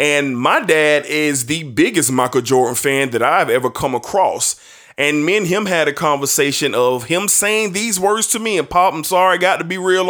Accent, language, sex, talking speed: American, English, male, 220 wpm